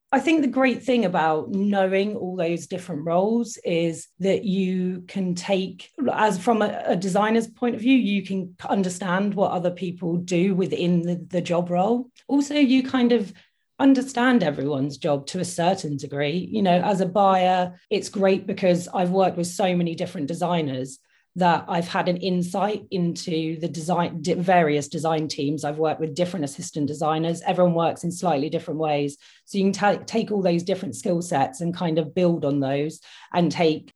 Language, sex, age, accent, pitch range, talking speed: English, female, 40-59, British, 170-210 Hz, 180 wpm